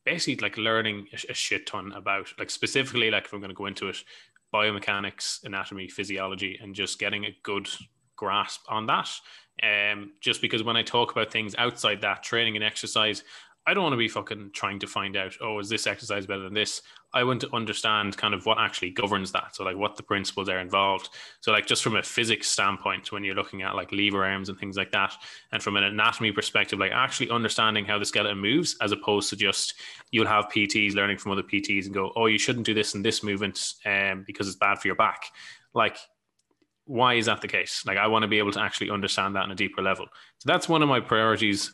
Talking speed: 230 wpm